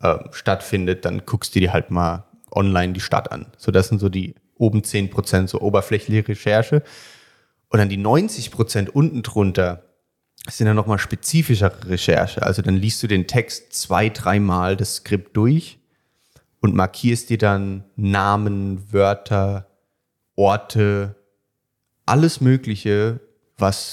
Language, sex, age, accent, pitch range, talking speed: German, male, 30-49, German, 100-120 Hz, 135 wpm